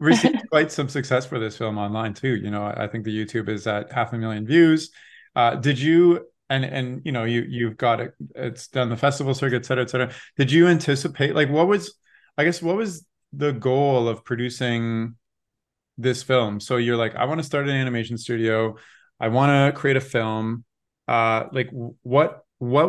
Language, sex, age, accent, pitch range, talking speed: English, male, 20-39, American, 115-140 Hz, 195 wpm